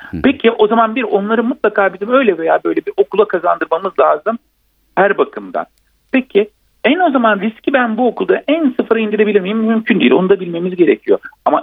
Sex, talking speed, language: male, 180 wpm, Turkish